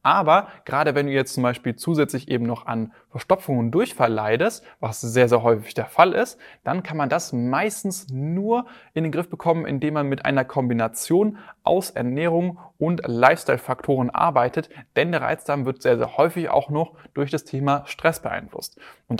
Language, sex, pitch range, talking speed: German, male, 125-165 Hz, 180 wpm